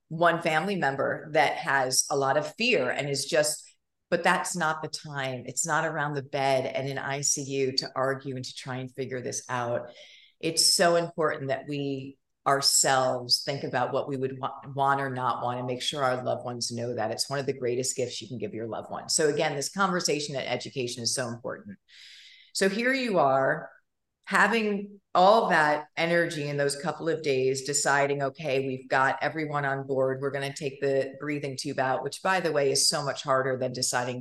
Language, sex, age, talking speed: English, female, 40-59, 205 wpm